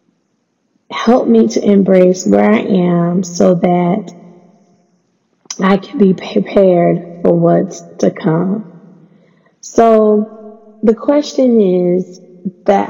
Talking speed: 100 wpm